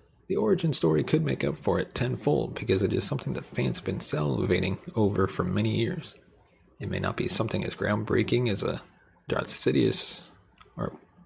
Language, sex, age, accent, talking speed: English, male, 40-59, American, 180 wpm